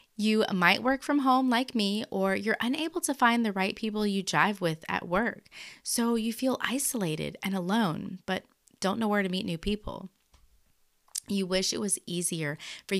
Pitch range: 175-235 Hz